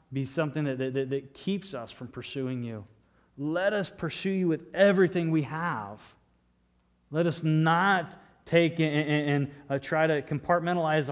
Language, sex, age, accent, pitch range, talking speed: English, male, 30-49, American, 120-160 Hz, 155 wpm